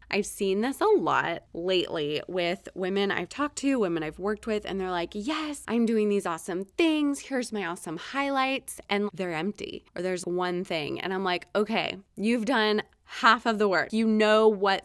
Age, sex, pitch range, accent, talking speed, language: 20-39, female, 185-240 Hz, American, 195 wpm, English